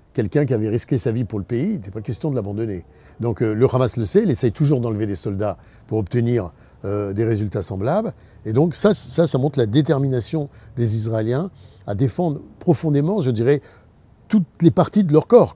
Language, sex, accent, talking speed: French, male, French, 210 wpm